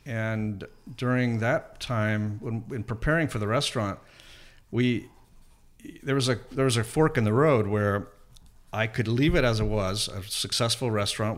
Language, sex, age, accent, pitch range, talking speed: English, male, 50-69, American, 105-125 Hz, 170 wpm